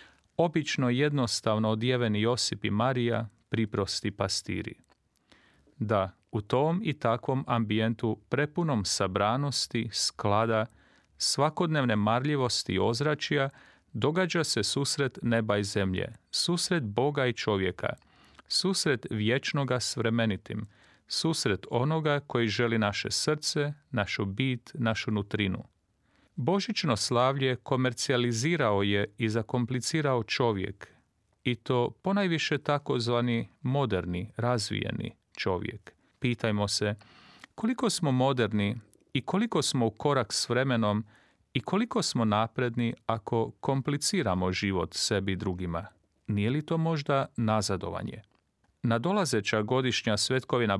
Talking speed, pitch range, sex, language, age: 105 wpm, 105-140 Hz, male, Croatian, 40-59